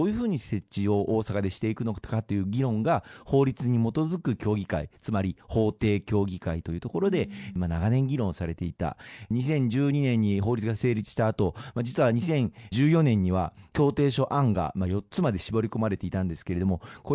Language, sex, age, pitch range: Japanese, male, 40-59, 95-125 Hz